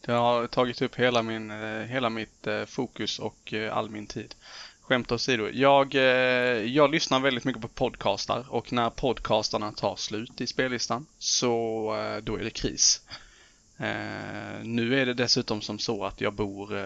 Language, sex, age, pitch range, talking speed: Swedish, male, 20-39, 110-130 Hz, 155 wpm